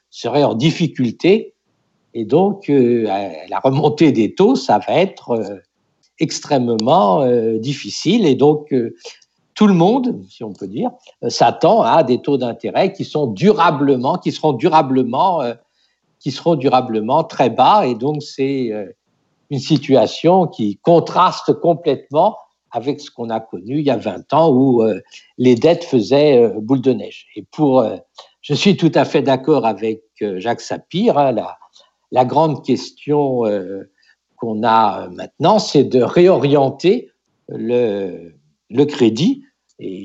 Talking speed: 150 wpm